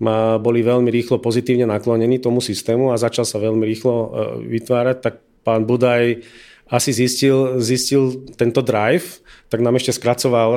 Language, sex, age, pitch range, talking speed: Czech, male, 40-59, 110-125 Hz, 140 wpm